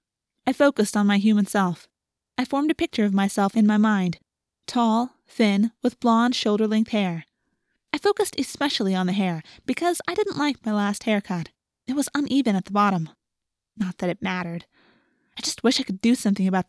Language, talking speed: English, 185 wpm